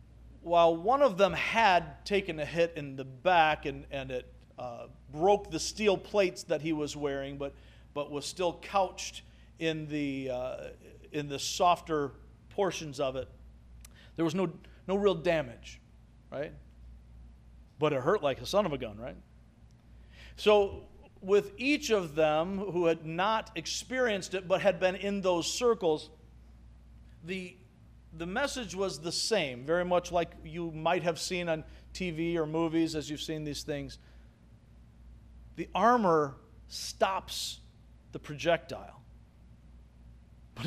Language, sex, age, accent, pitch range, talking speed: English, male, 50-69, American, 110-185 Hz, 145 wpm